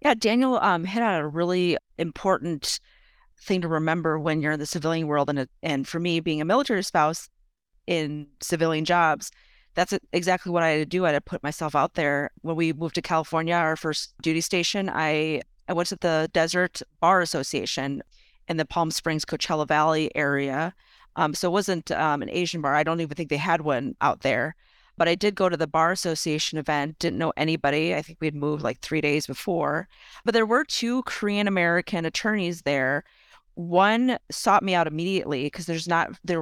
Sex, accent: female, American